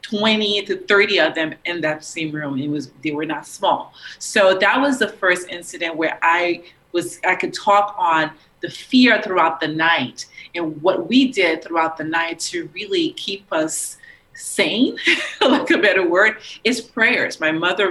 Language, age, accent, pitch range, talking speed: English, 30-49, American, 160-195 Hz, 180 wpm